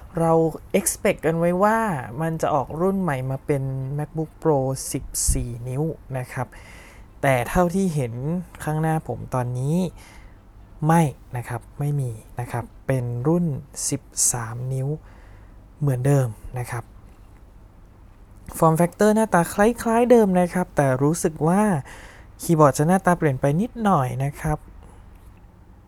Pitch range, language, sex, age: 120-155 Hz, Thai, male, 20-39